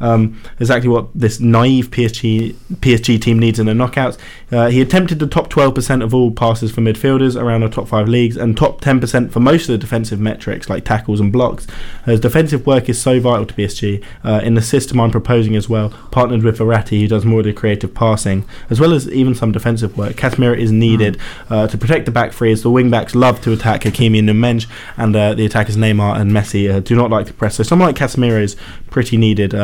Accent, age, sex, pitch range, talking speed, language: British, 20-39, male, 105-125 Hz, 230 wpm, English